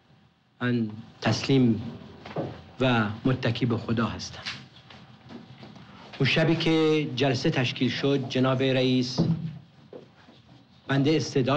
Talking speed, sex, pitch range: 85 wpm, male, 120-145 Hz